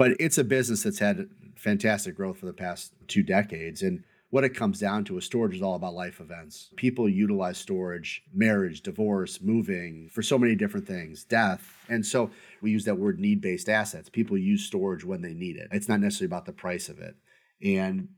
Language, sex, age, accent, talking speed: English, male, 40-59, American, 205 wpm